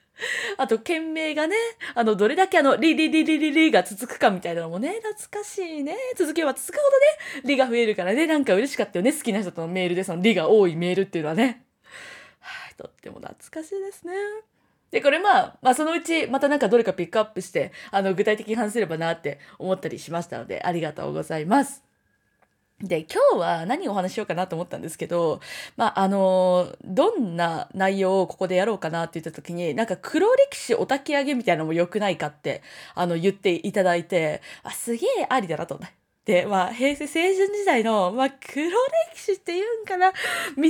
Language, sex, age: Japanese, female, 20-39